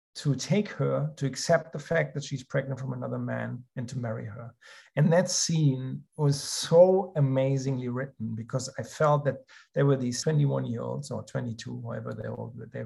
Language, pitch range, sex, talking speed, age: English, 130-155 Hz, male, 175 wpm, 50-69